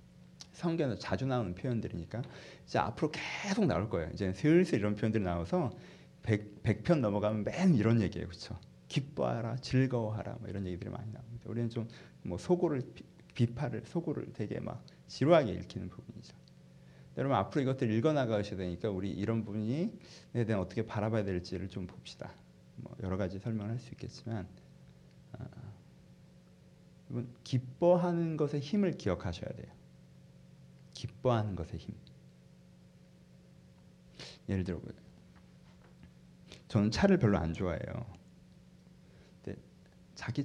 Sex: male